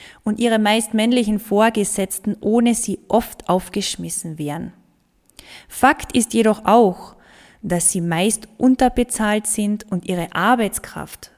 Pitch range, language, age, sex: 185-230 Hz, German, 20-39, female